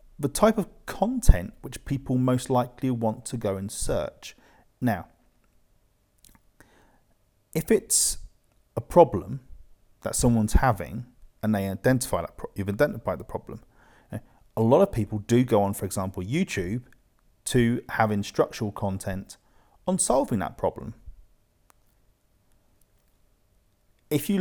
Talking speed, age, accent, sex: 115 wpm, 40-59, British, male